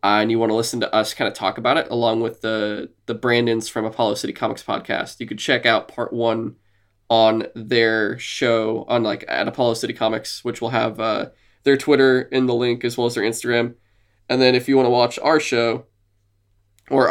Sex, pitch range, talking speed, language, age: male, 110-125 Hz, 220 wpm, English, 20-39